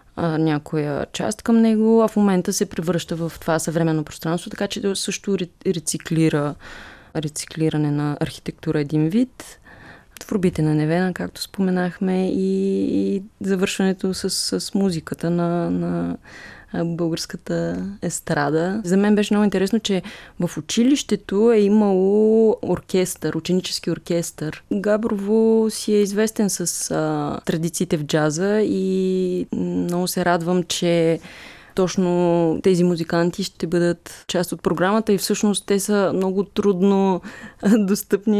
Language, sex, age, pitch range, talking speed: Bulgarian, female, 20-39, 165-200 Hz, 125 wpm